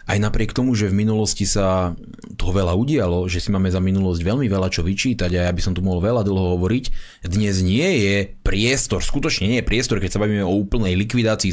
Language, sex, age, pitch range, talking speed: Slovak, male, 30-49, 105-150 Hz, 220 wpm